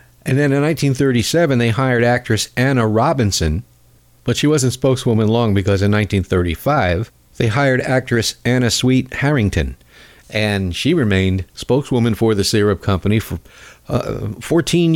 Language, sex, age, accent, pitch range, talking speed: English, male, 50-69, American, 105-140 Hz, 135 wpm